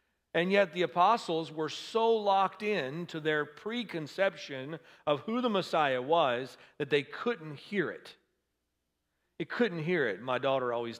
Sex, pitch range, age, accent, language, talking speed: male, 125-190 Hz, 40-59, American, English, 155 wpm